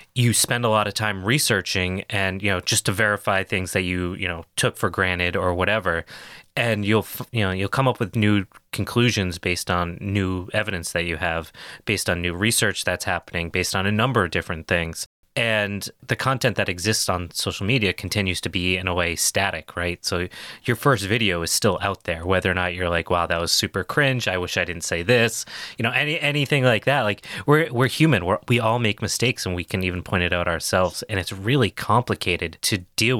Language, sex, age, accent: English, male, 20-39, American